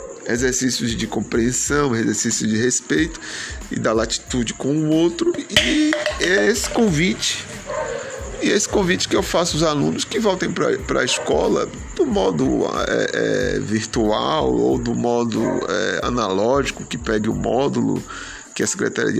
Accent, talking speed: Brazilian, 130 wpm